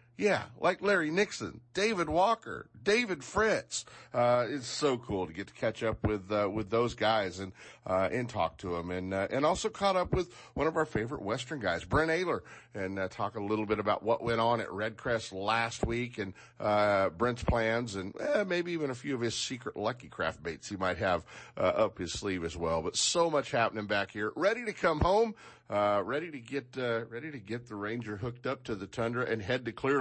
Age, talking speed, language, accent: 50-69, 220 wpm, English, American